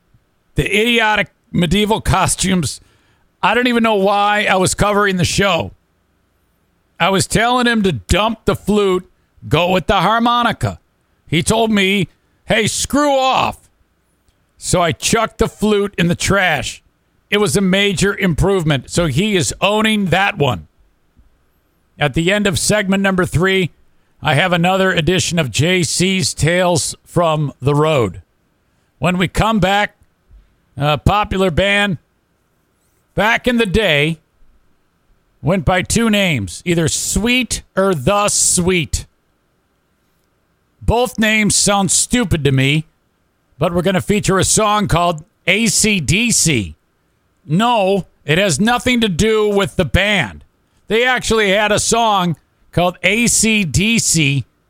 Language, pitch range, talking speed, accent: English, 150-205 Hz, 130 wpm, American